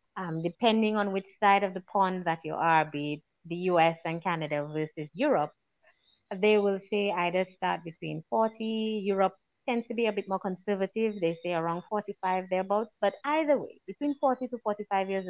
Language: English